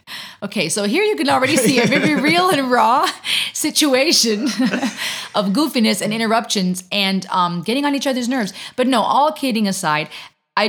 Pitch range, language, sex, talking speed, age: 175-235 Hz, English, female, 170 wpm, 30-49